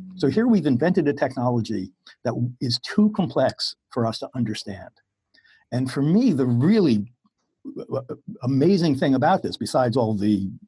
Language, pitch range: English, 115-170 Hz